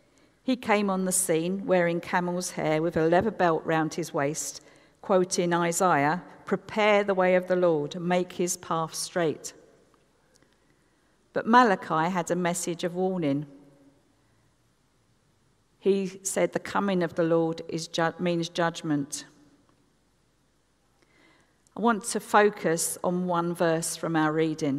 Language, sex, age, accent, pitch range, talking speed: English, female, 50-69, British, 155-185 Hz, 135 wpm